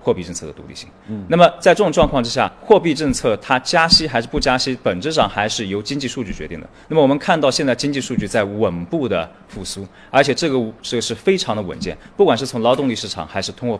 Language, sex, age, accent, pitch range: Chinese, male, 20-39, native, 100-160 Hz